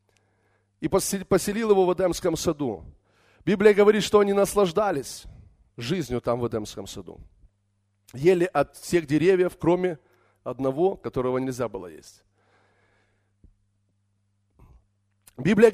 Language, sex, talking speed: Russian, male, 105 wpm